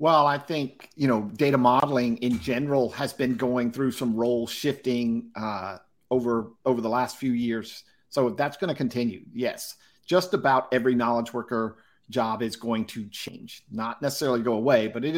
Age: 50-69